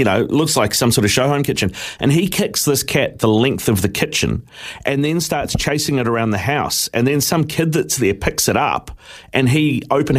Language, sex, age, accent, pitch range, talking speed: English, male, 40-59, Australian, 115-145 Hz, 235 wpm